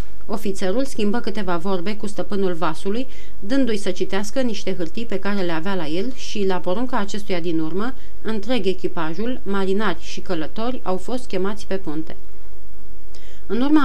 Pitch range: 185-225 Hz